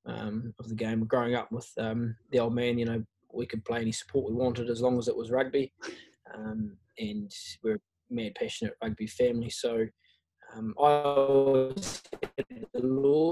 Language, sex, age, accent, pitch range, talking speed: English, male, 20-39, Australian, 115-135 Hz, 175 wpm